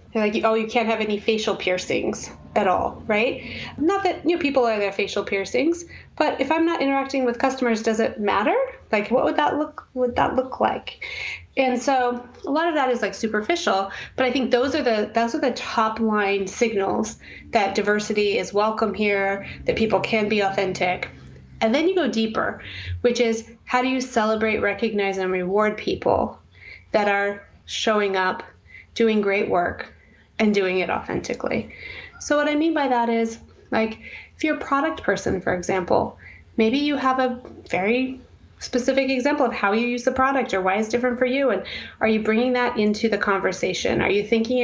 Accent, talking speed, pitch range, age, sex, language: American, 190 wpm, 205-260 Hz, 30-49, female, English